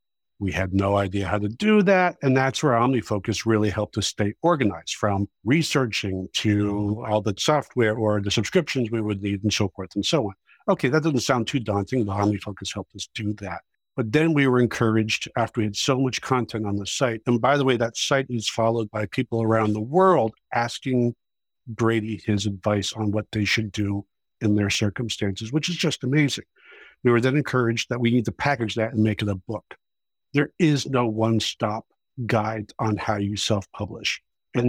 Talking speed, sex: 200 wpm, male